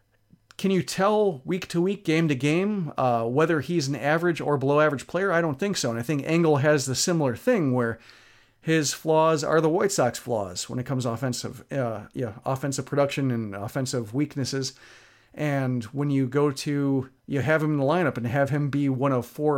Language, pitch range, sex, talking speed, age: English, 130-155 Hz, male, 185 wpm, 40-59